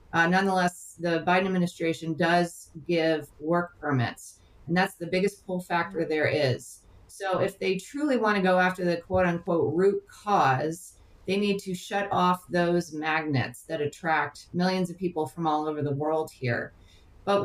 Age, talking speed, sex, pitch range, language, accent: 40-59, 170 wpm, female, 160-200 Hz, English, American